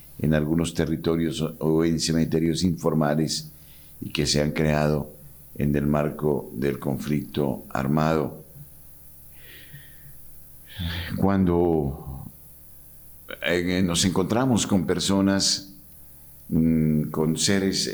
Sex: male